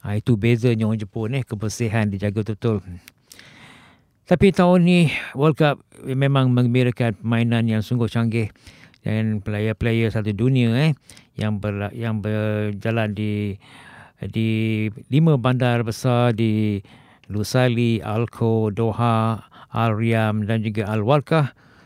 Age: 50-69